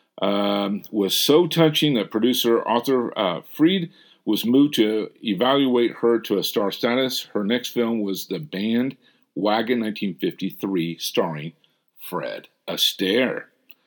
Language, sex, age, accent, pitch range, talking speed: English, male, 50-69, American, 105-145 Hz, 120 wpm